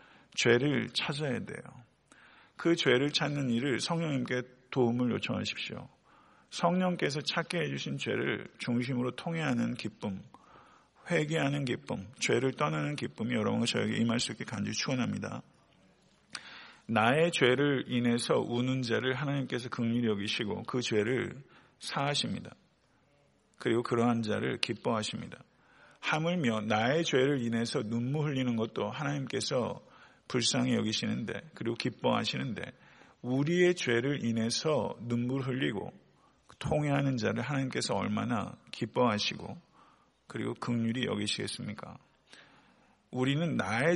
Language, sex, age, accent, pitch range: Korean, male, 50-69, native, 120-155 Hz